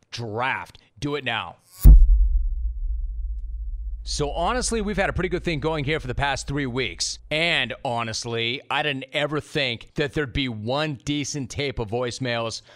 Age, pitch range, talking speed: 30-49, 120-160 Hz, 155 wpm